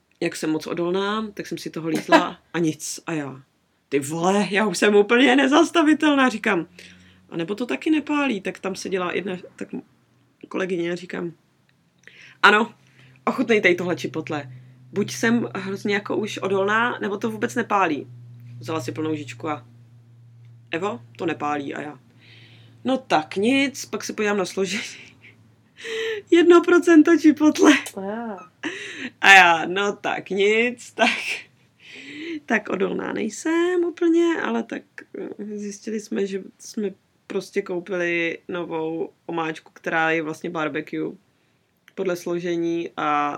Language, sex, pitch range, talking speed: Czech, female, 155-230 Hz, 135 wpm